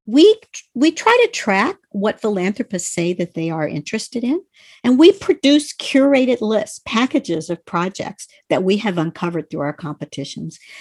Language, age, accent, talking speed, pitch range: English, 50-69, American, 155 wpm, 170-245 Hz